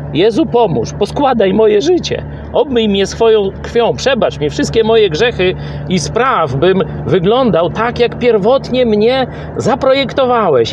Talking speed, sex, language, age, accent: 130 wpm, male, Polish, 50-69, native